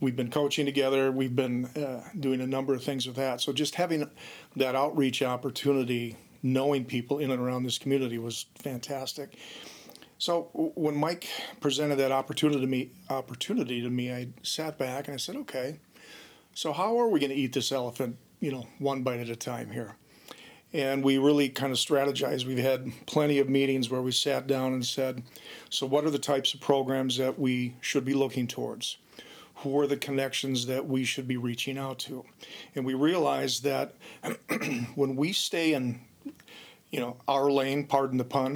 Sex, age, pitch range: male, 40-59, 125-140 Hz